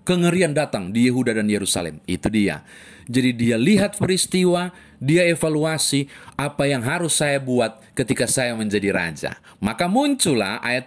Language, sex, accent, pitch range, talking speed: Indonesian, male, native, 110-155 Hz, 145 wpm